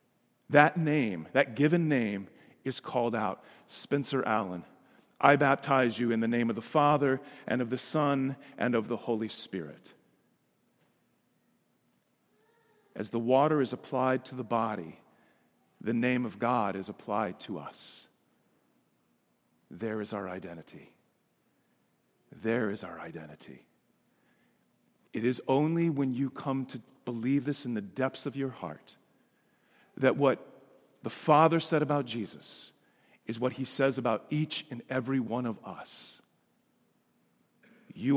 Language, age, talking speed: English, 40-59, 135 wpm